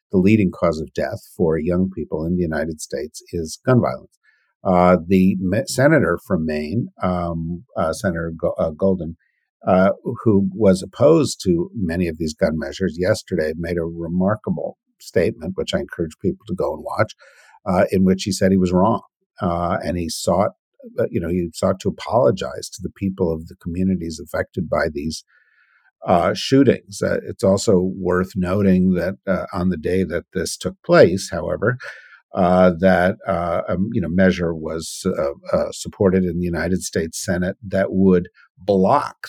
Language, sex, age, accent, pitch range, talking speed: English, male, 50-69, American, 85-95 Hz, 170 wpm